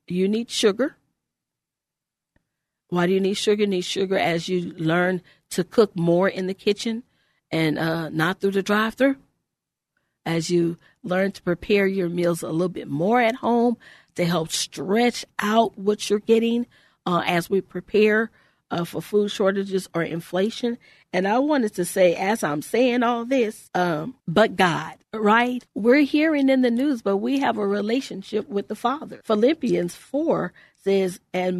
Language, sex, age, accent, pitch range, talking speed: English, female, 40-59, American, 180-235 Hz, 165 wpm